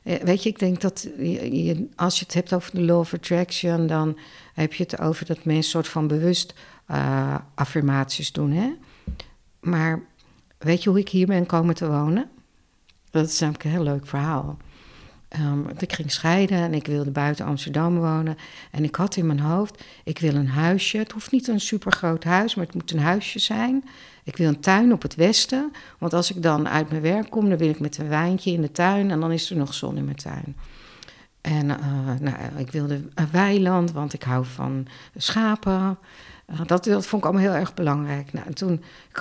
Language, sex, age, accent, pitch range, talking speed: Dutch, female, 60-79, Dutch, 150-185 Hz, 210 wpm